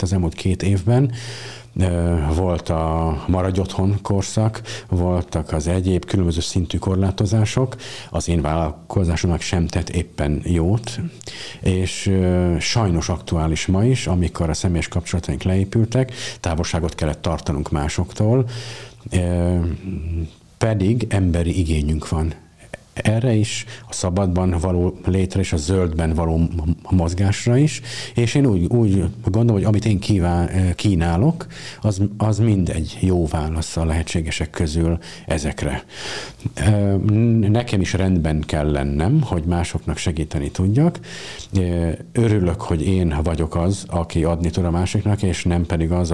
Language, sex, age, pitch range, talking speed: Hungarian, male, 50-69, 85-105 Hz, 120 wpm